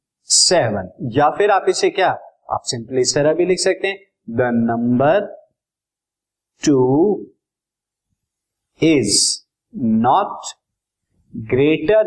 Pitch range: 120-175 Hz